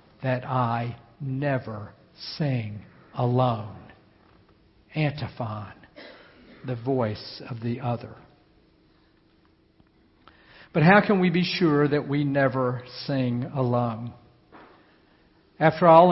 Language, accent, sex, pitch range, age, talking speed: English, American, male, 125-155 Hz, 60-79, 90 wpm